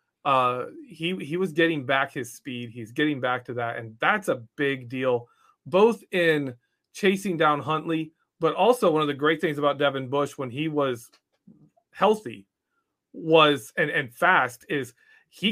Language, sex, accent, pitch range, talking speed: English, male, American, 135-185 Hz, 165 wpm